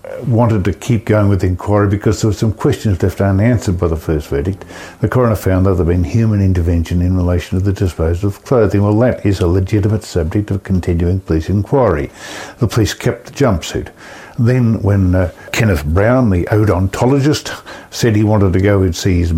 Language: English